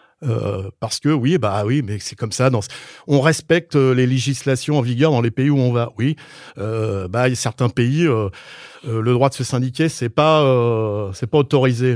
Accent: French